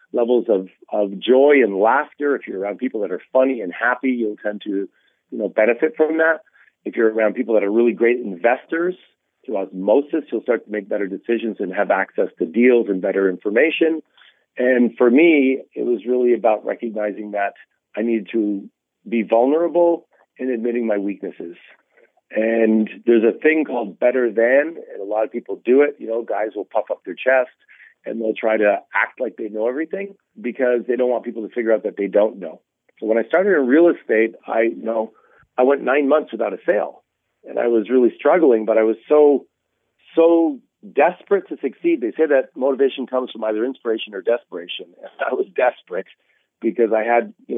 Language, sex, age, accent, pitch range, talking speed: English, male, 40-59, American, 110-130 Hz, 200 wpm